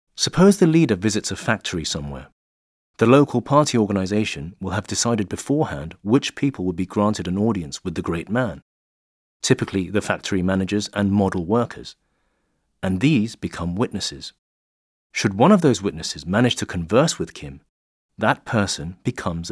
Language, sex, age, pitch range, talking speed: English, male, 30-49, 90-120 Hz, 155 wpm